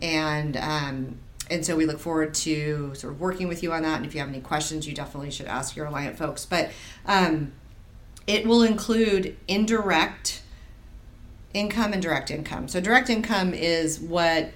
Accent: American